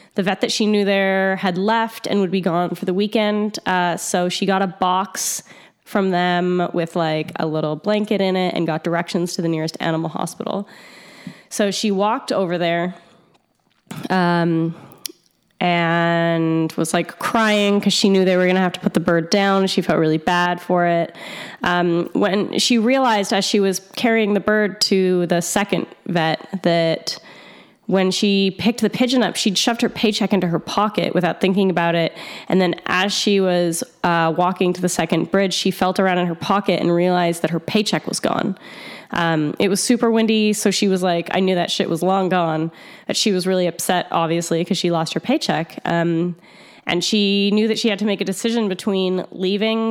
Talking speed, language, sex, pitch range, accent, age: 195 wpm, English, female, 175-205 Hz, American, 10-29